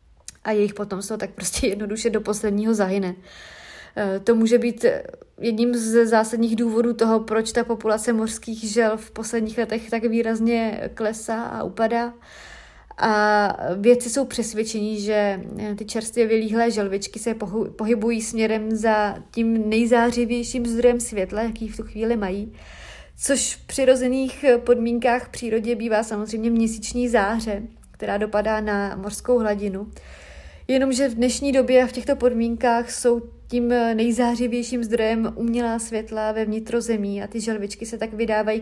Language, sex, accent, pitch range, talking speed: Czech, female, native, 210-235 Hz, 140 wpm